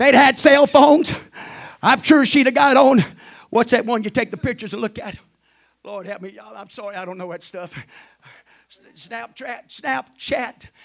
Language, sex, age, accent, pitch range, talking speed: English, male, 40-59, American, 250-310 Hz, 185 wpm